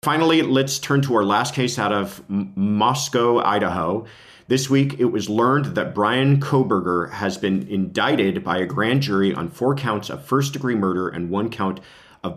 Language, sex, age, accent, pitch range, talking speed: English, male, 40-59, American, 90-115 Hz, 180 wpm